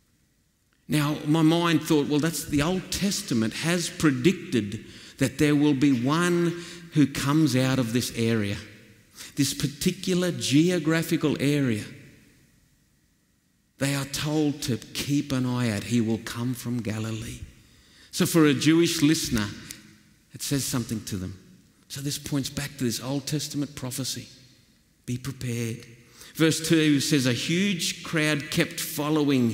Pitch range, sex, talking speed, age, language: 115-155 Hz, male, 140 wpm, 50-69, English